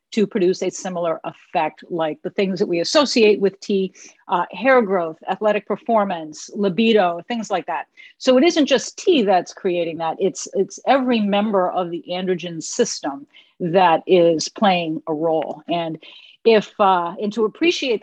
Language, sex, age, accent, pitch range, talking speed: English, female, 50-69, American, 180-225 Hz, 165 wpm